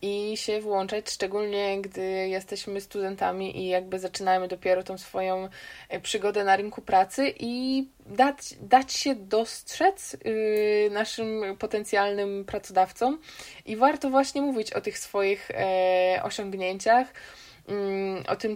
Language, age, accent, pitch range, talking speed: Polish, 20-39, native, 190-220 Hz, 115 wpm